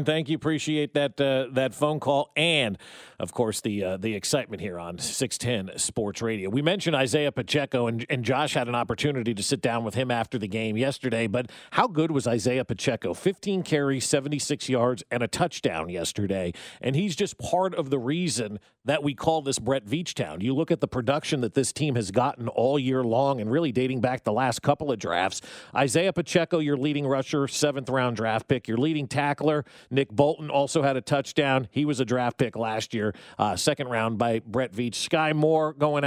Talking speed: 200 wpm